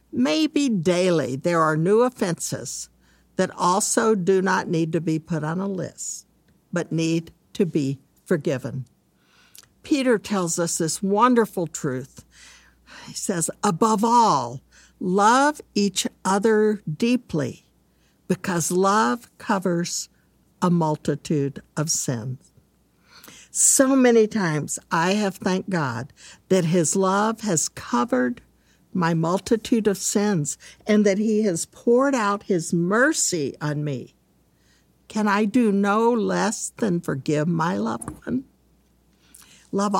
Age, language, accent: 60-79, English, American